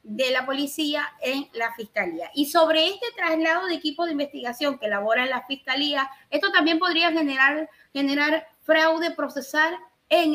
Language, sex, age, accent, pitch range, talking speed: Spanish, female, 30-49, American, 245-305 Hz, 155 wpm